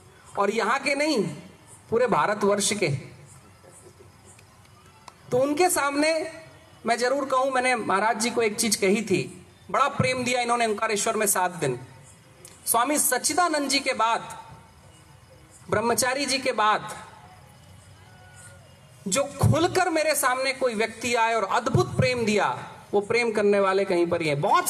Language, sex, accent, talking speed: Hindi, male, native, 140 wpm